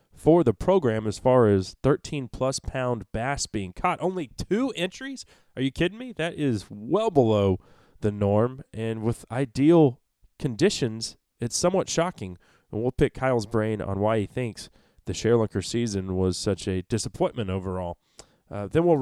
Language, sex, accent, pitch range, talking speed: English, male, American, 100-130 Hz, 160 wpm